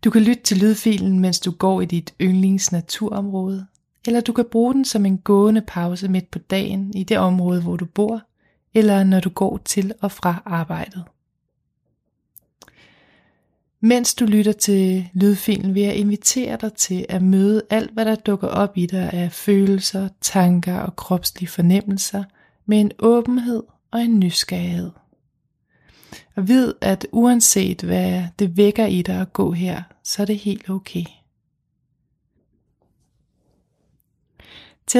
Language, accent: Danish, native